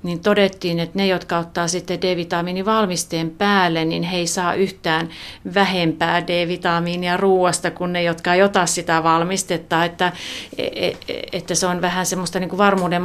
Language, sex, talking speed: Finnish, female, 150 wpm